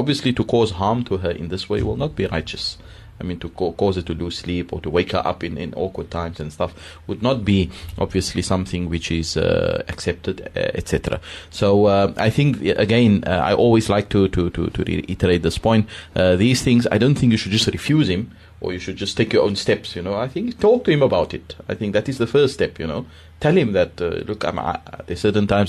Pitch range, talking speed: 90-110 Hz, 250 wpm